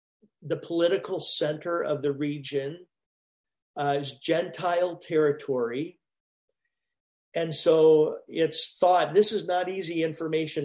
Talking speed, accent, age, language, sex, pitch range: 105 wpm, American, 50-69, English, male, 145-180 Hz